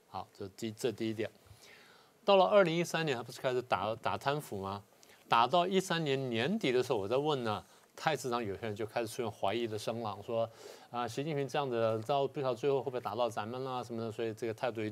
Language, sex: Chinese, male